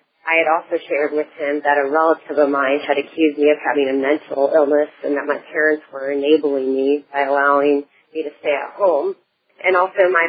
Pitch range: 145-160 Hz